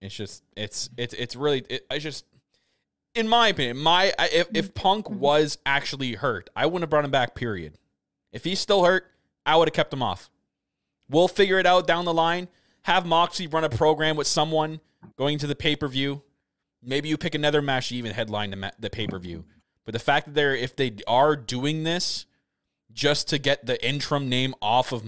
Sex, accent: male, American